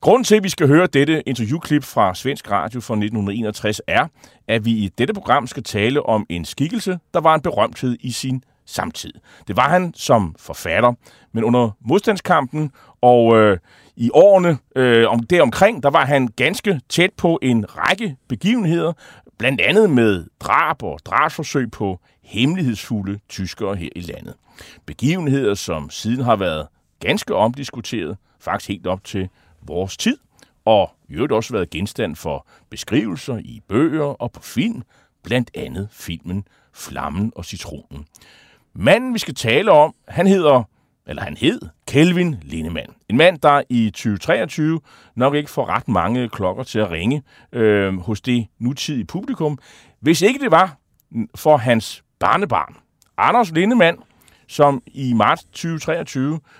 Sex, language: male, Danish